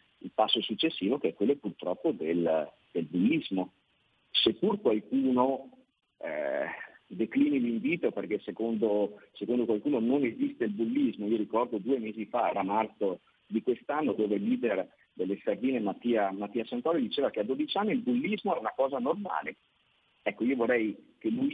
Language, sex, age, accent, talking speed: Italian, male, 50-69, native, 155 wpm